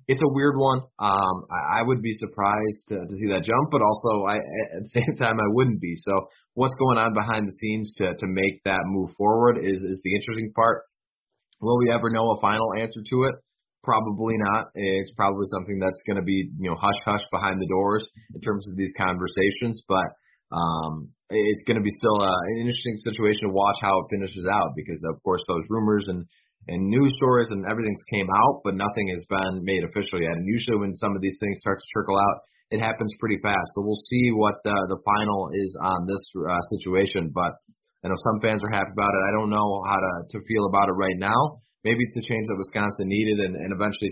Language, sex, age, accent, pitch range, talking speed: English, male, 20-39, American, 95-110 Hz, 225 wpm